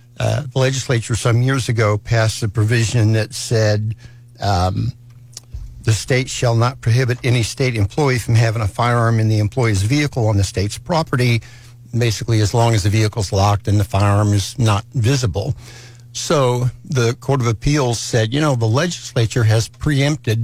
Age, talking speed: 60-79, 165 wpm